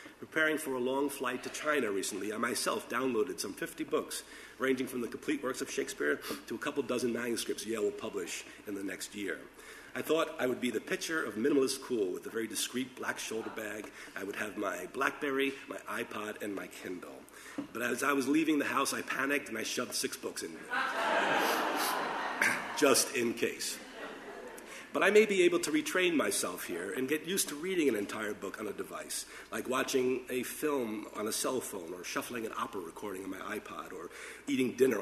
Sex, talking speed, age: male, 200 wpm, 50-69